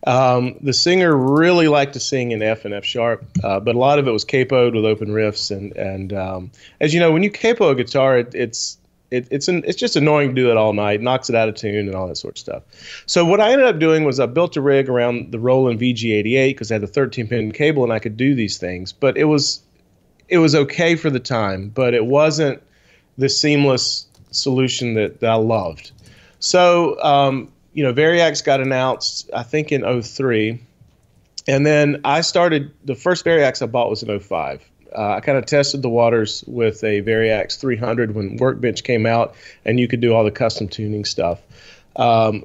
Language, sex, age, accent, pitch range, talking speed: English, male, 30-49, American, 110-140 Hz, 215 wpm